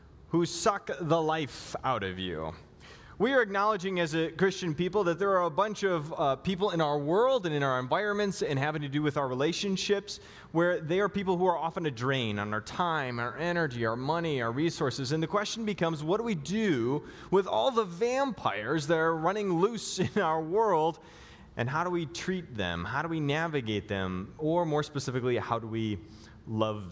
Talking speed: 205 wpm